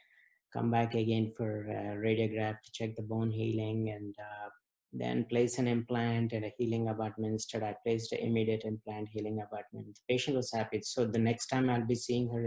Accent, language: Indian, English